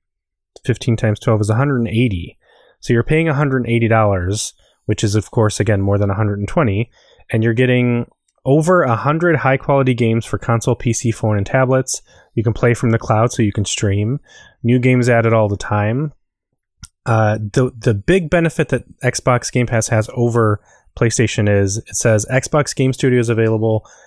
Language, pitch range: English, 105-125 Hz